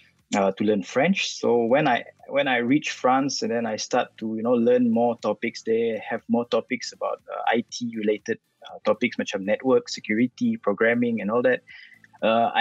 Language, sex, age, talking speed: English, male, 20-39, 185 wpm